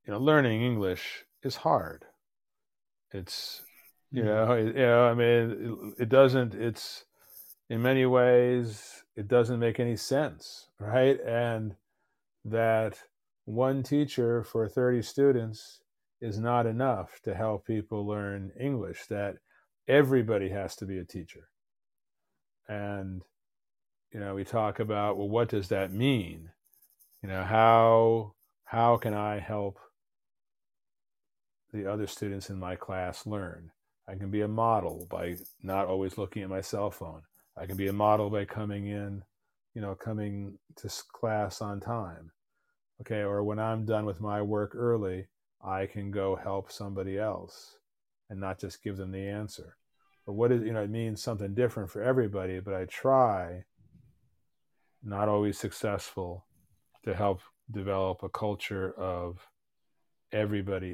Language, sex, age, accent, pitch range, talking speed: English, male, 40-59, American, 95-115 Hz, 145 wpm